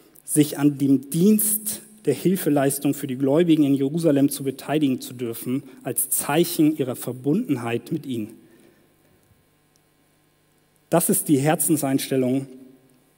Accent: German